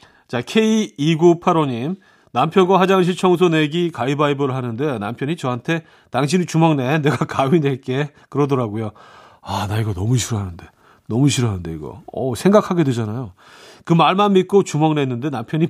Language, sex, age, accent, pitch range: Korean, male, 40-59, native, 110-165 Hz